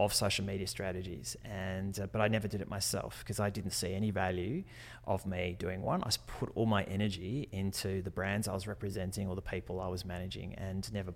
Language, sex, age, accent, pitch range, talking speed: English, male, 30-49, Australian, 95-115 Hz, 225 wpm